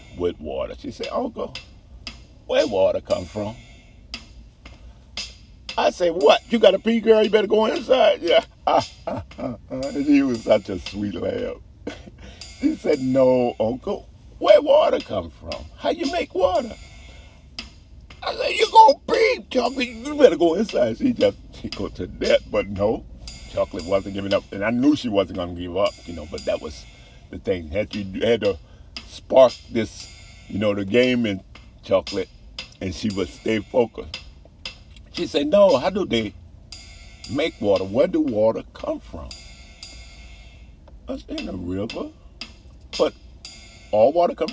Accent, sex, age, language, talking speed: American, male, 50-69, English, 155 wpm